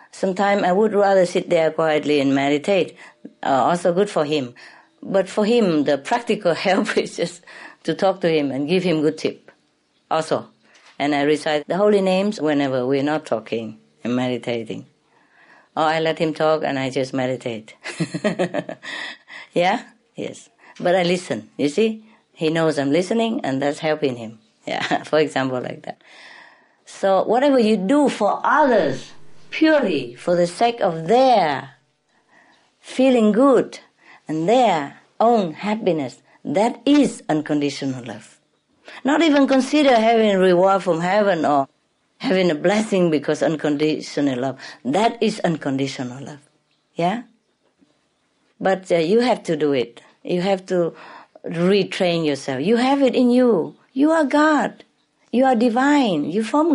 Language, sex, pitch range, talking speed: English, female, 150-225 Hz, 145 wpm